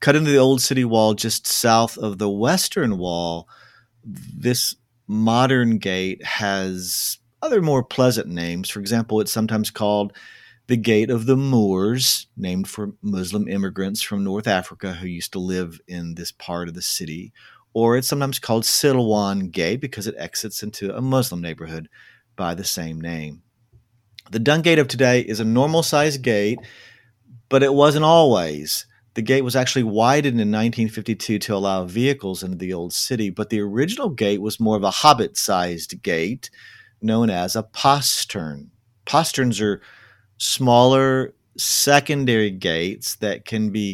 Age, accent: 50-69, American